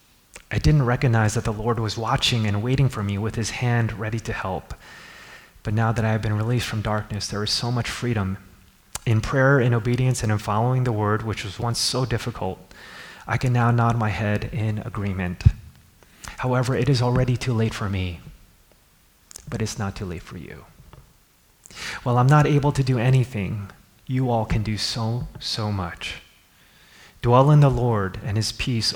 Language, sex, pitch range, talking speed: English, male, 100-125 Hz, 185 wpm